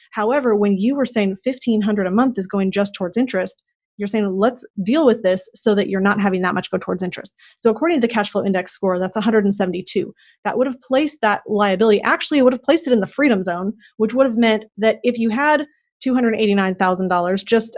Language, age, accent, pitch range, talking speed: English, 30-49, American, 195-230 Hz, 220 wpm